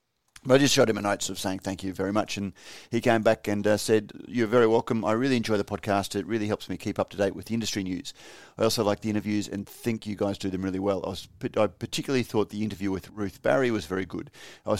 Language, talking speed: English, 270 wpm